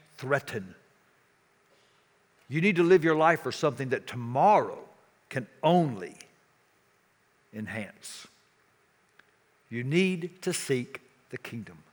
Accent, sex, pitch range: American, male, 135-175 Hz